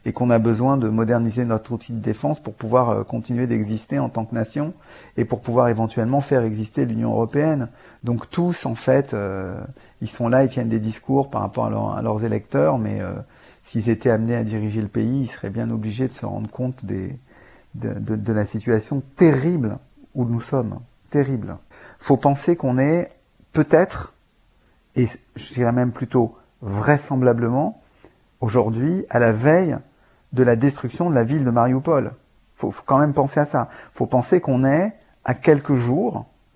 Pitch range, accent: 115-150 Hz, French